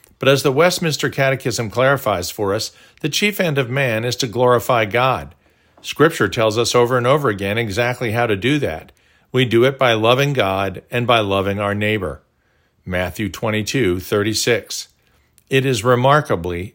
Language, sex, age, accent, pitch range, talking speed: English, male, 50-69, American, 105-140 Hz, 160 wpm